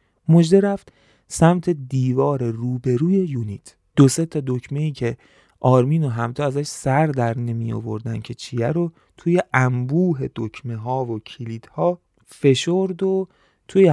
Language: Persian